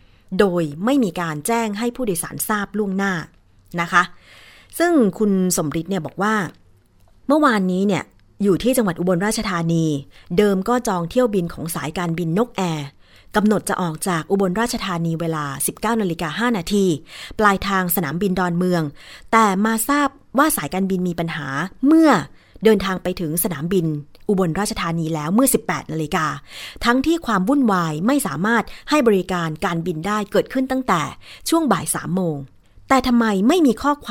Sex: female